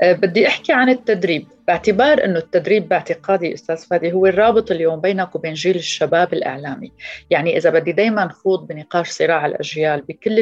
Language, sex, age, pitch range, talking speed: Arabic, female, 30-49, 160-215 Hz, 160 wpm